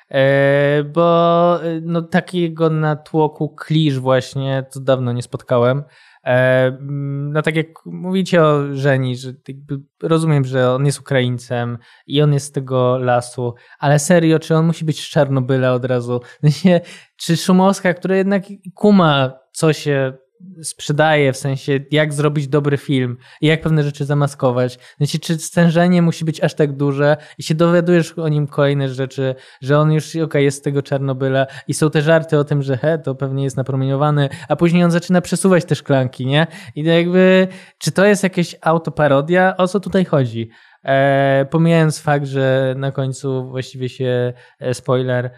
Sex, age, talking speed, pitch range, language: male, 20-39, 160 wpm, 130-160 Hz, Polish